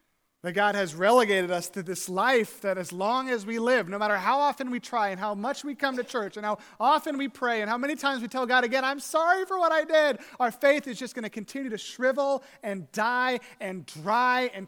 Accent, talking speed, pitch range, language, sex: American, 245 wpm, 180-245 Hz, English, male